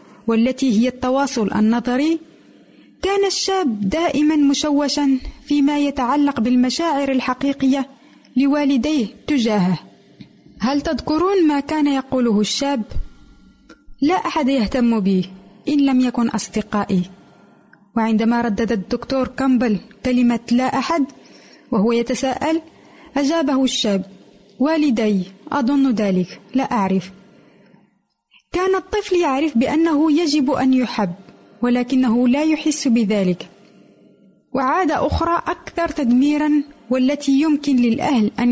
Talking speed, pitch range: 100 wpm, 235-305 Hz